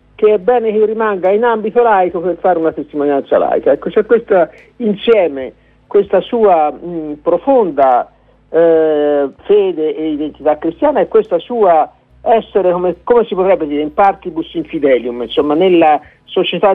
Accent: native